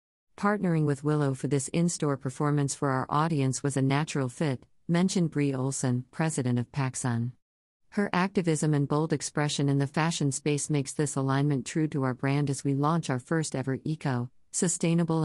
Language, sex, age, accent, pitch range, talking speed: English, female, 50-69, American, 130-150 Hz, 170 wpm